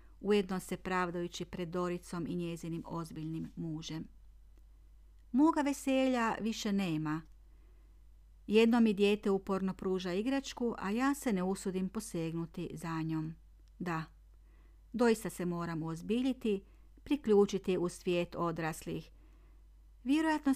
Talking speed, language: 110 wpm, Croatian